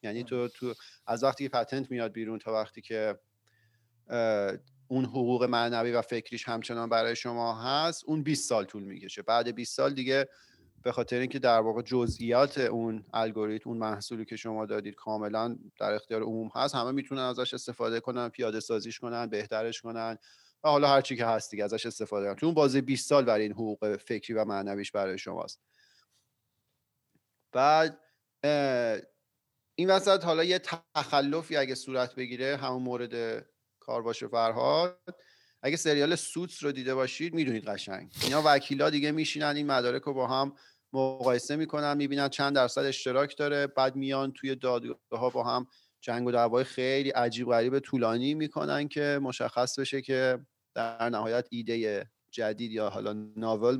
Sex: male